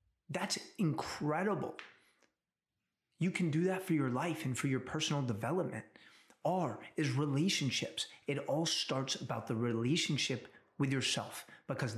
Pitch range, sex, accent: 125-165 Hz, male, American